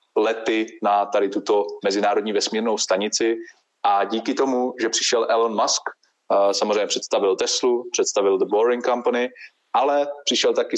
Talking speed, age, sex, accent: 135 wpm, 20-39, male, native